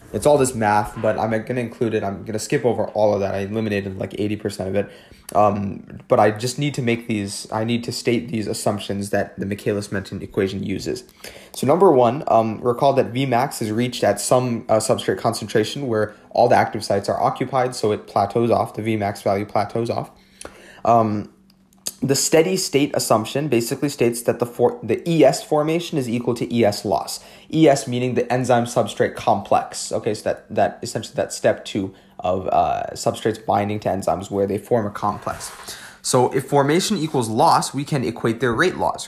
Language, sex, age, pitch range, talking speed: English, male, 20-39, 105-130 Hz, 195 wpm